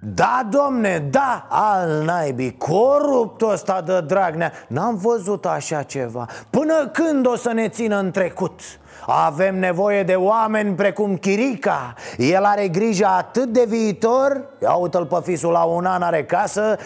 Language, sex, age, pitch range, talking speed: Romanian, male, 30-49, 175-245 Hz, 150 wpm